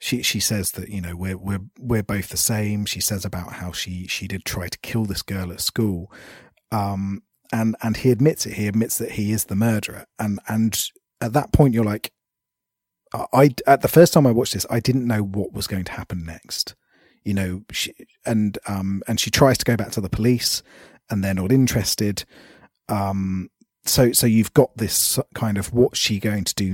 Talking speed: 215 wpm